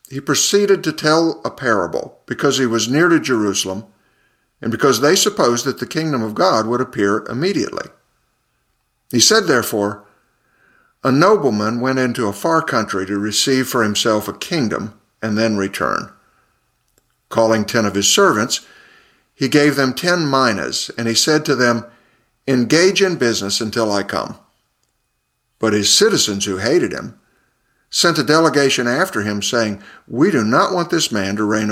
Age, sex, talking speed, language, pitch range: 60-79, male, 160 wpm, English, 105-145 Hz